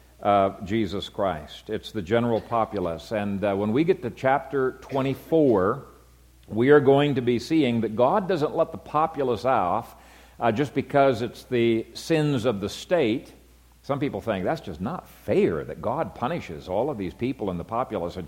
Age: 50-69